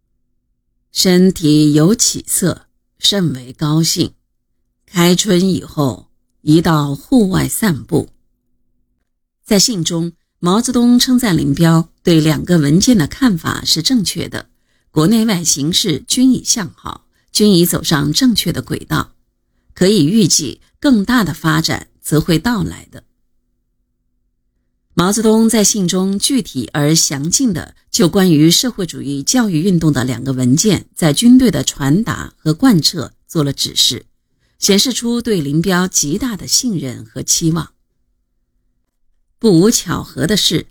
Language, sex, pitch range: Chinese, female, 150-205 Hz